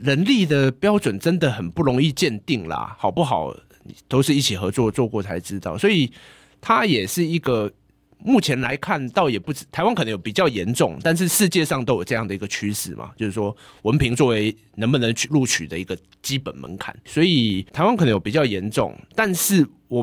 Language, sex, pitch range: Chinese, male, 105-155 Hz